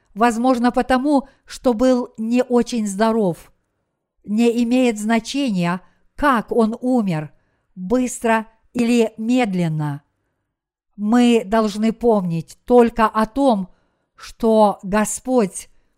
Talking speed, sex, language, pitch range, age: 90 wpm, female, Russian, 205-250 Hz, 50-69